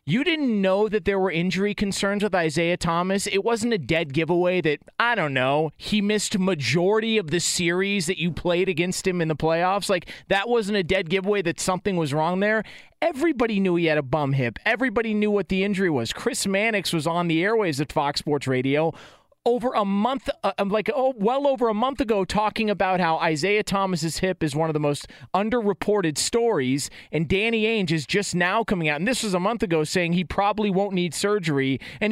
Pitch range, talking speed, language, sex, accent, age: 155-210 Hz, 210 wpm, English, male, American, 30-49